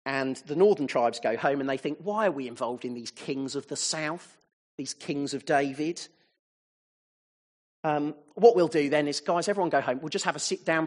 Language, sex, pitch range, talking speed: English, male, 135-175 Hz, 210 wpm